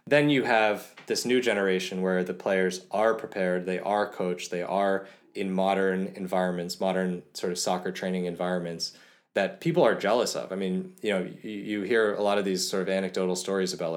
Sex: male